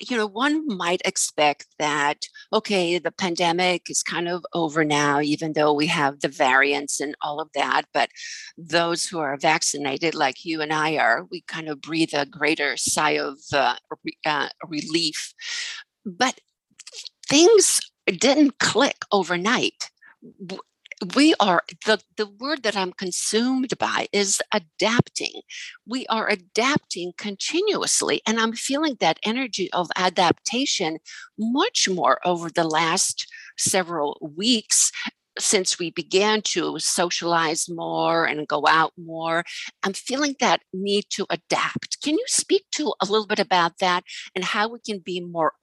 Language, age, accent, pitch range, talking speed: English, 50-69, American, 165-230 Hz, 145 wpm